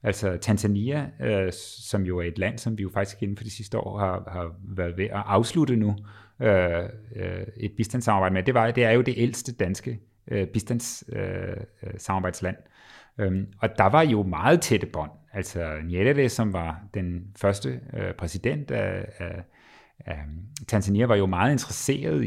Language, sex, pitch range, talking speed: Danish, male, 95-115 Hz, 170 wpm